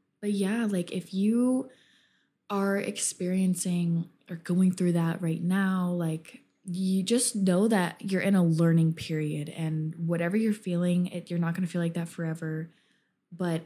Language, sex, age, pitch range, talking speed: English, female, 20-39, 165-195 Hz, 160 wpm